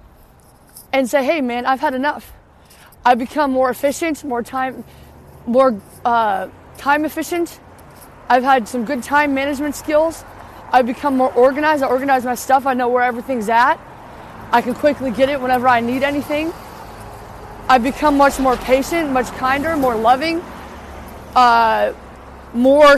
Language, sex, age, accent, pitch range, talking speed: English, female, 20-39, American, 260-310 Hz, 150 wpm